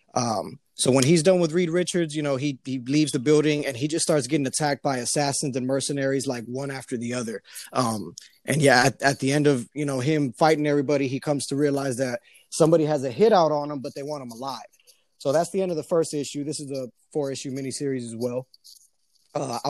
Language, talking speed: English, 235 wpm